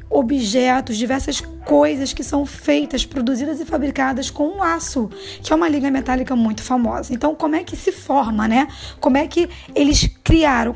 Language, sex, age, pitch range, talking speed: Portuguese, female, 20-39, 245-295 Hz, 175 wpm